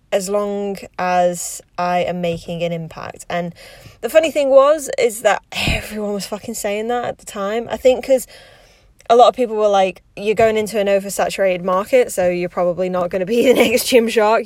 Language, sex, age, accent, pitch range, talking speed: English, female, 10-29, British, 175-215 Hz, 200 wpm